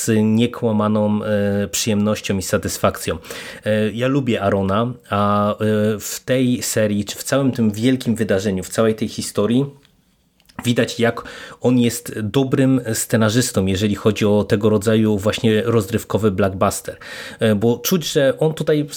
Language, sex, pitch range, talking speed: Polish, male, 105-120 Hz, 140 wpm